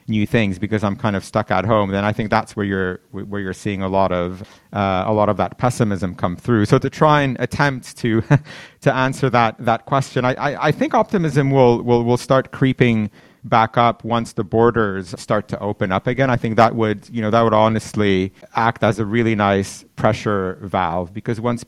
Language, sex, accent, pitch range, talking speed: English, male, American, 100-120 Hz, 215 wpm